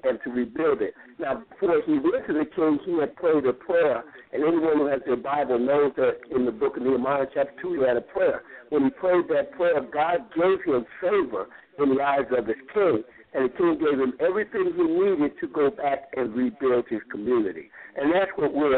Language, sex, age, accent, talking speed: English, male, 60-79, American, 220 wpm